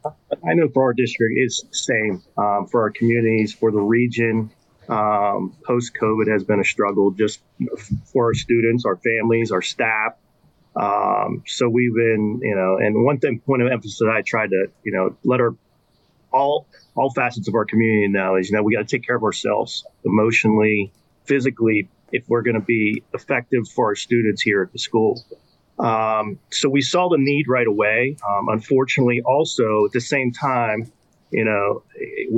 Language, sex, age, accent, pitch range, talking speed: English, male, 40-59, American, 110-130 Hz, 180 wpm